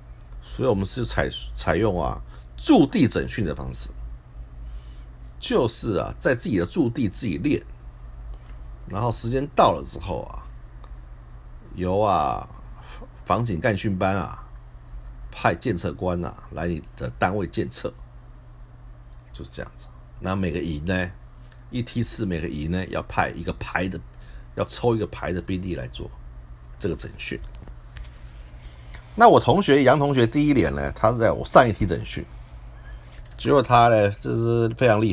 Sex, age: male, 50-69